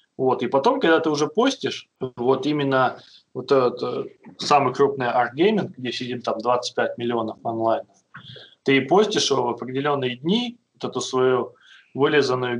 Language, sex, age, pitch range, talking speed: Russian, male, 20-39, 120-150 Hz, 145 wpm